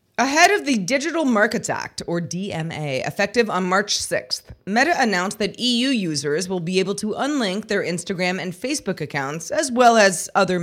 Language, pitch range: English, 170-225 Hz